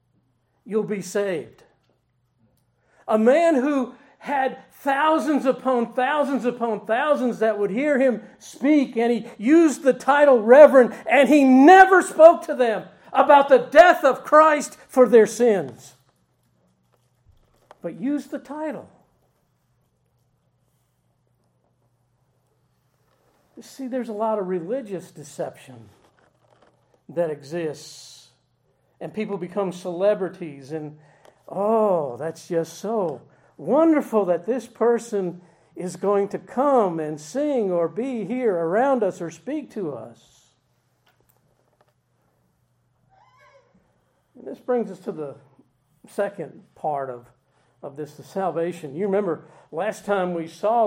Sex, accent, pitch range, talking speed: male, American, 165-260 Hz, 115 wpm